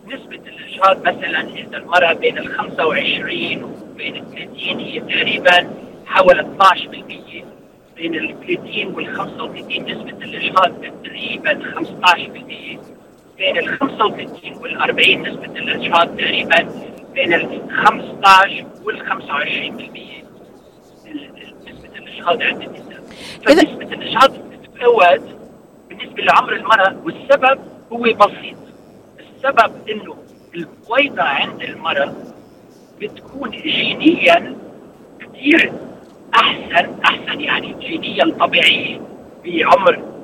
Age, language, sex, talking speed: 50-69, Arabic, male, 95 wpm